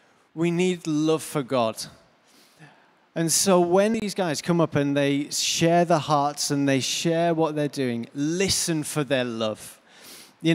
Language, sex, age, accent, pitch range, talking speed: English, male, 30-49, British, 150-200 Hz, 160 wpm